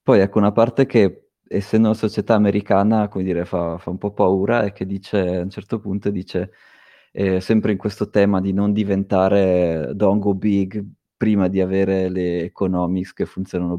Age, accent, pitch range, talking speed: 20-39, native, 90-105 Hz, 180 wpm